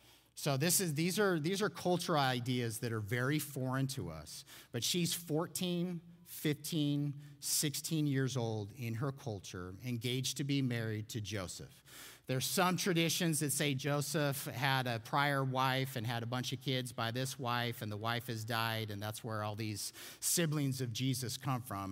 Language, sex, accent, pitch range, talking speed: English, male, American, 115-150 Hz, 180 wpm